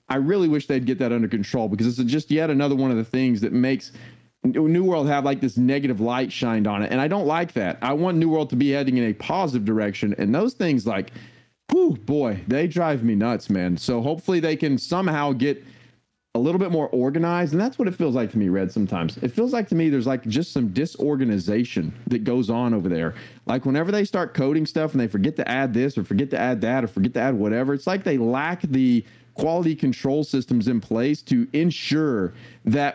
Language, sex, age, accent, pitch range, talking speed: English, male, 30-49, American, 125-160 Hz, 230 wpm